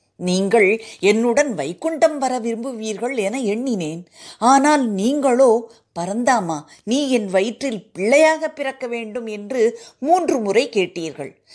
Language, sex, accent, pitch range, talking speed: Tamil, female, native, 180-245 Hz, 105 wpm